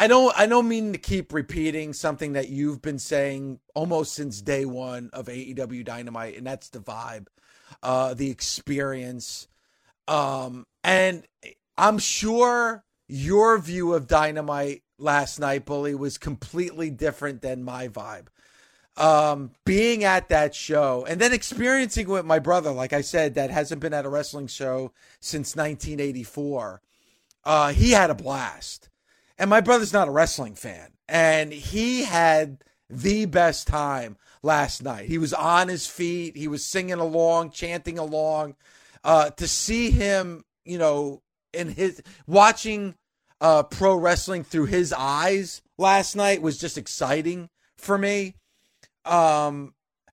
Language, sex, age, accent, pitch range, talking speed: English, male, 40-59, American, 140-180 Hz, 145 wpm